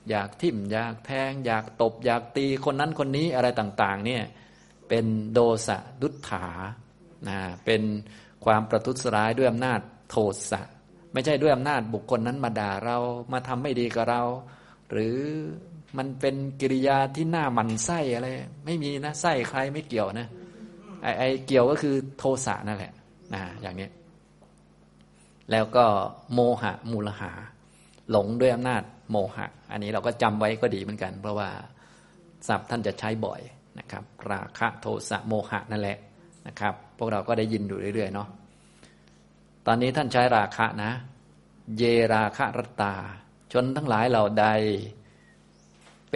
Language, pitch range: Thai, 100-125 Hz